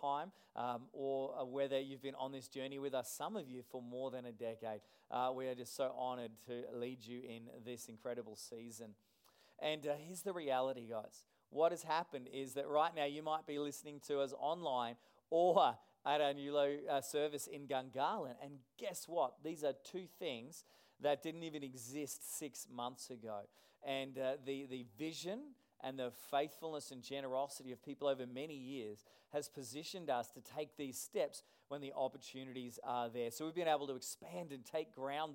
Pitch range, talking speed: 120-145 Hz, 185 wpm